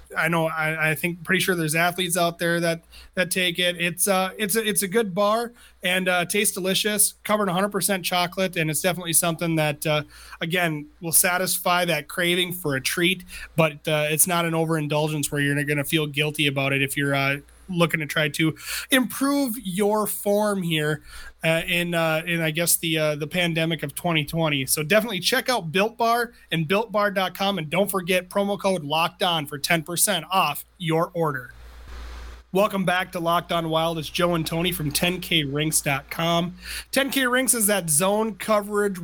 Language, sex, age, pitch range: English, male, 30-49, 155-190 Hz